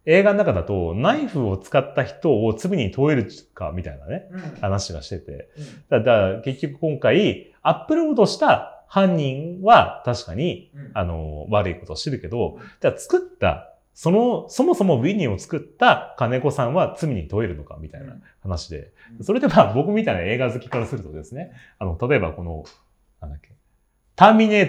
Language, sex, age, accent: Japanese, male, 30-49, native